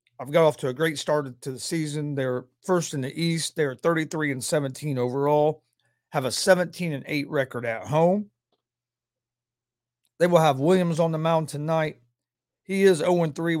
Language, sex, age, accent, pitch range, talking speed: English, male, 40-59, American, 130-165 Hz, 165 wpm